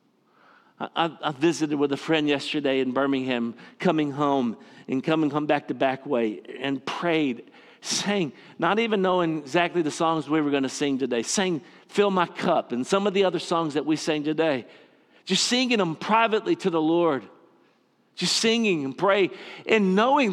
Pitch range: 135-180 Hz